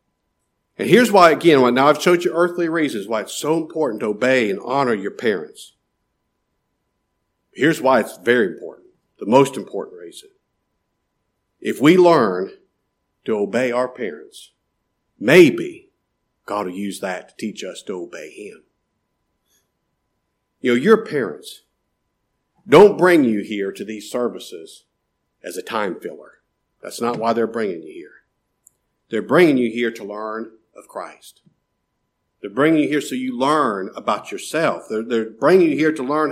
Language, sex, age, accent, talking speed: English, male, 50-69, American, 155 wpm